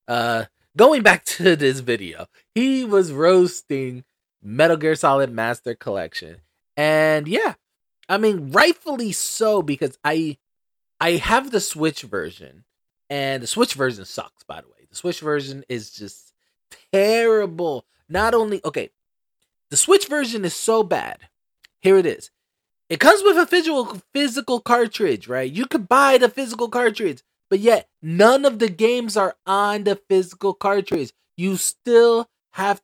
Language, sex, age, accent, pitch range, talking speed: English, male, 20-39, American, 150-220 Hz, 150 wpm